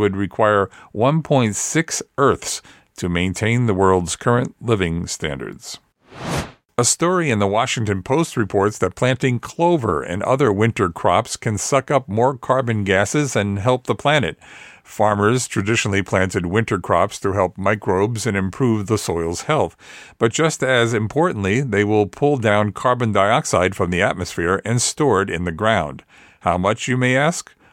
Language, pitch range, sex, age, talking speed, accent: English, 100-130 Hz, male, 50-69, 155 wpm, American